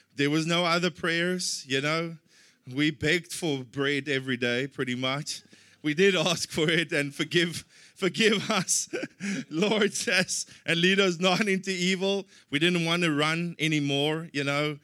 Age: 20-39